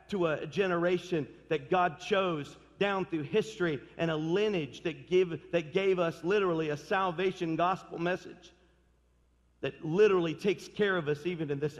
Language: English